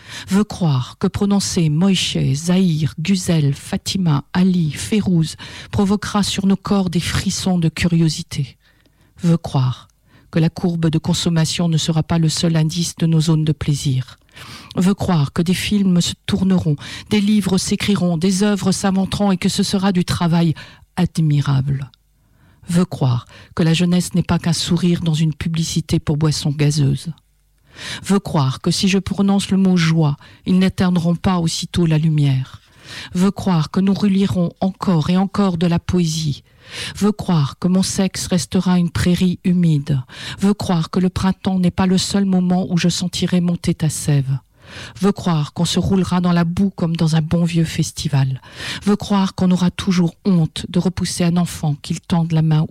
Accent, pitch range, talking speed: French, 155-185 Hz, 175 wpm